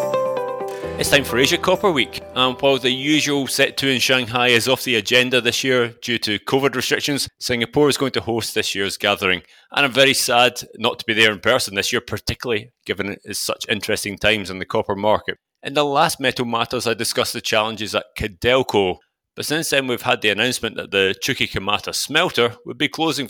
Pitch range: 110-135 Hz